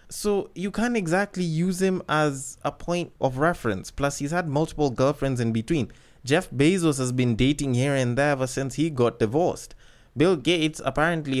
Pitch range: 140-185 Hz